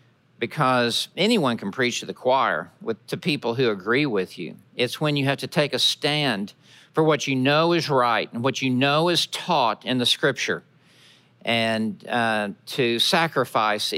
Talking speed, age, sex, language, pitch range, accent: 175 wpm, 50-69, male, English, 115-145 Hz, American